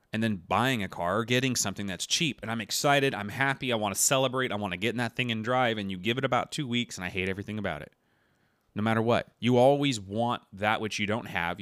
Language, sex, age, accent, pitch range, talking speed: English, male, 30-49, American, 100-130 Hz, 270 wpm